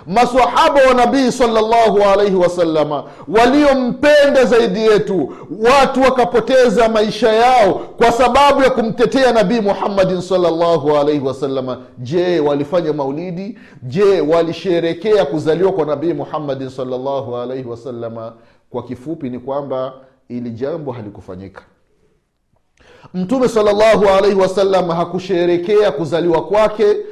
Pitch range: 180-250 Hz